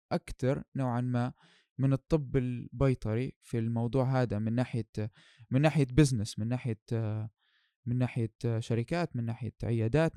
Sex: male